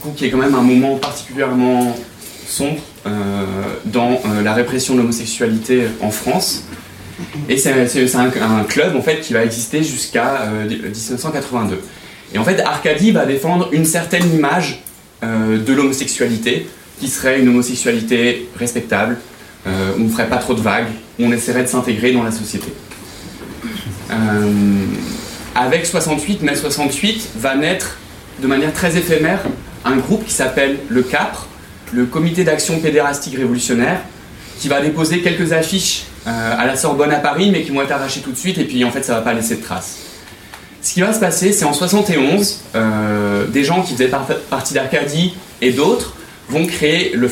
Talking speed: 175 wpm